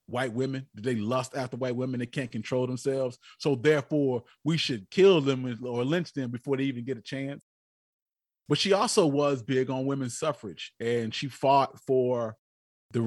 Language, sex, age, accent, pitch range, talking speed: English, male, 30-49, American, 125-160 Hz, 180 wpm